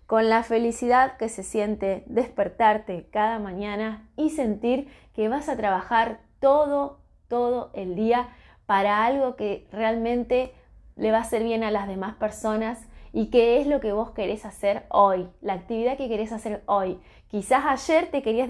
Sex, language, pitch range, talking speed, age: female, Spanish, 200-250 Hz, 165 wpm, 20-39